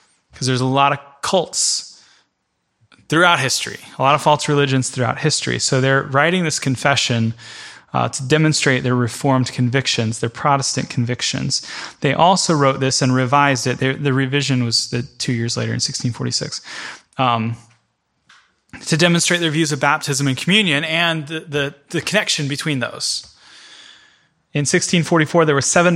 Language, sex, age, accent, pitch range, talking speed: English, male, 20-39, American, 125-150 Hz, 150 wpm